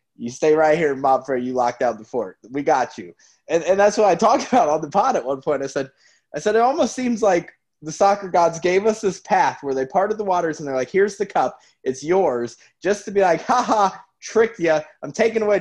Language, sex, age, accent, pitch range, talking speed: English, male, 20-39, American, 115-160 Hz, 245 wpm